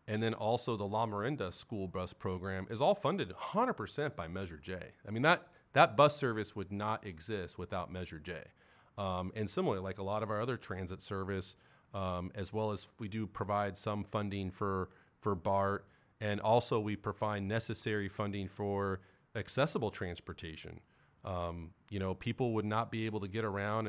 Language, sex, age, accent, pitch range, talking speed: English, male, 30-49, American, 95-110 Hz, 180 wpm